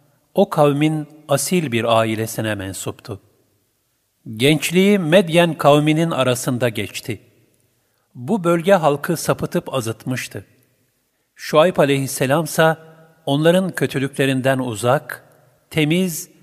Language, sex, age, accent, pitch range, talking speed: Turkish, male, 50-69, native, 110-155 Hz, 80 wpm